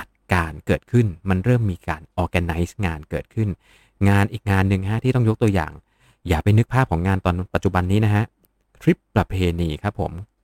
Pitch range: 90-110 Hz